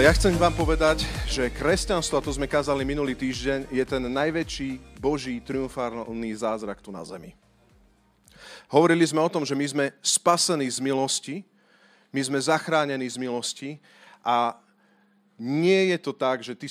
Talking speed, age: 155 wpm, 40-59